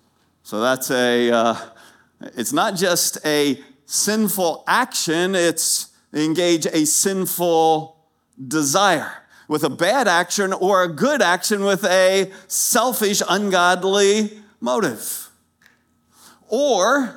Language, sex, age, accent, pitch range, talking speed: English, male, 50-69, American, 125-200 Hz, 100 wpm